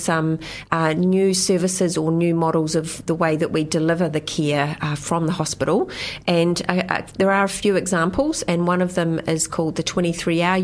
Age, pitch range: 30-49, 165-195 Hz